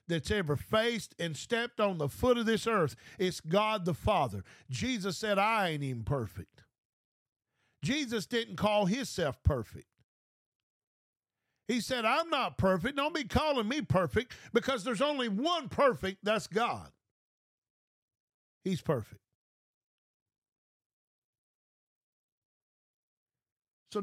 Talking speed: 115 wpm